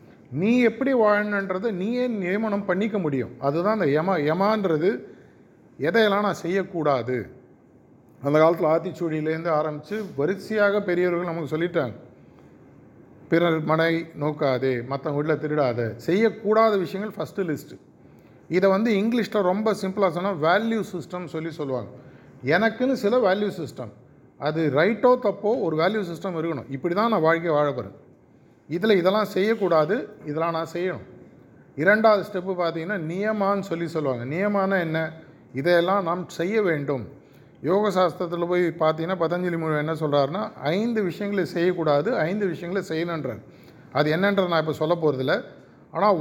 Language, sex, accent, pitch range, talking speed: Tamil, male, native, 155-200 Hz, 125 wpm